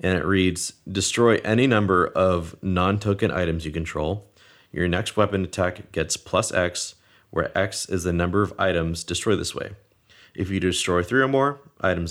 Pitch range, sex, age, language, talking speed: 85-100 Hz, male, 30-49, English, 175 wpm